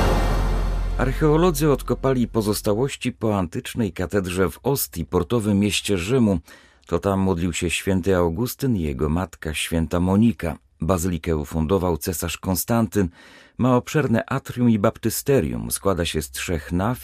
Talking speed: 125 wpm